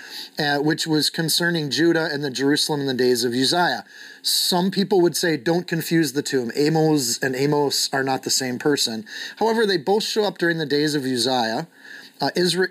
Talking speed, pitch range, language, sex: 190 wpm, 130-165 Hz, English, male